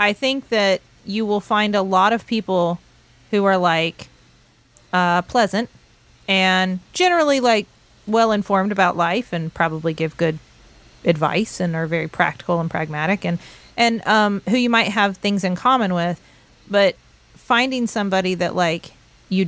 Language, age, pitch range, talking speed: English, 30-49, 175-215 Hz, 150 wpm